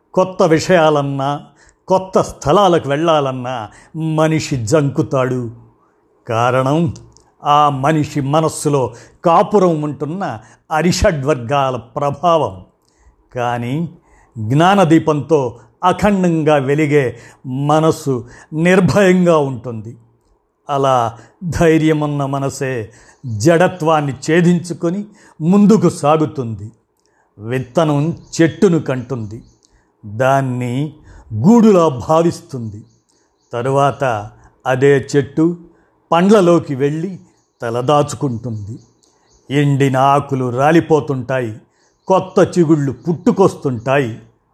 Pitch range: 125-165 Hz